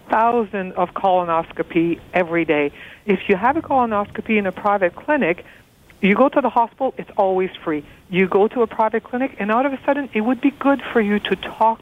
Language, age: English, 60-79